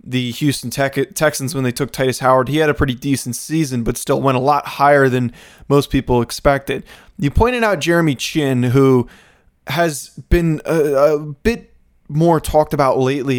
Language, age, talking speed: English, 20-39, 175 wpm